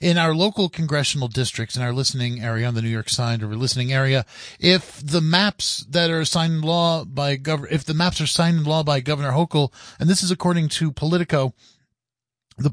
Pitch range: 130-170 Hz